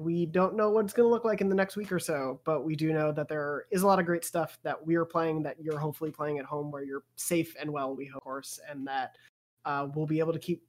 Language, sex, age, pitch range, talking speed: English, male, 20-39, 150-180 Hz, 290 wpm